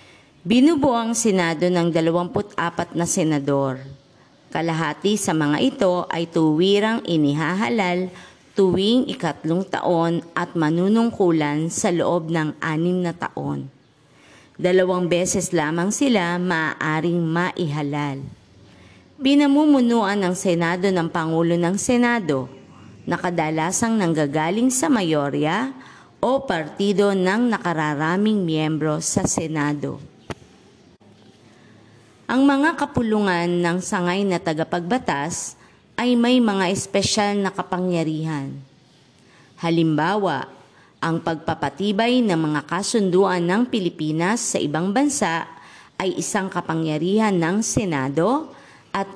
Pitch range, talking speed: 155-200 Hz, 100 wpm